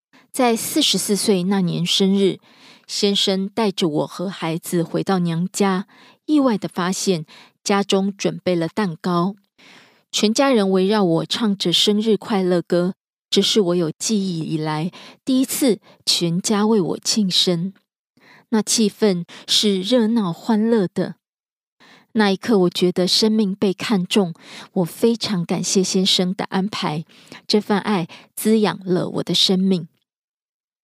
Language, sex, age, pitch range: Korean, female, 20-39, 175-215 Hz